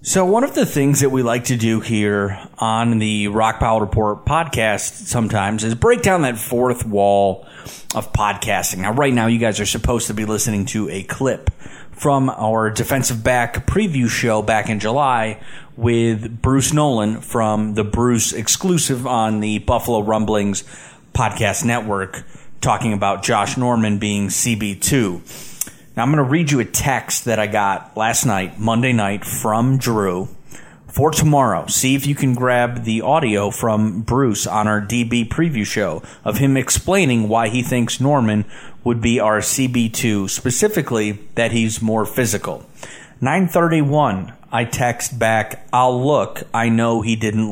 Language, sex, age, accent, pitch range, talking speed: English, male, 30-49, American, 105-125 Hz, 160 wpm